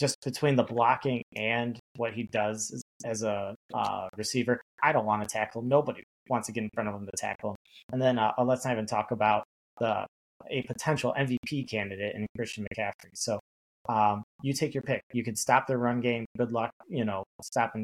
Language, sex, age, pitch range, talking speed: English, male, 30-49, 105-125 Hz, 205 wpm